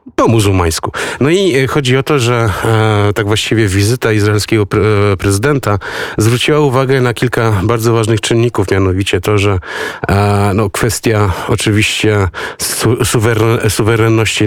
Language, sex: Polish, male